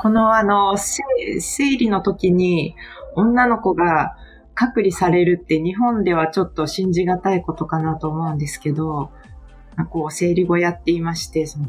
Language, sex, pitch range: Japanese, female, 160-210 Hz